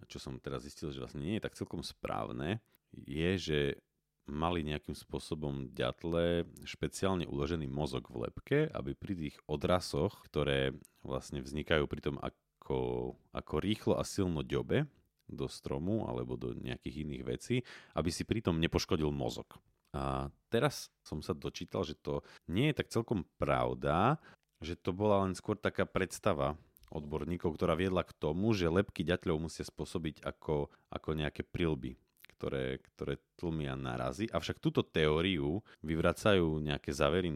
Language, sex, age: Slovak, male, 40-59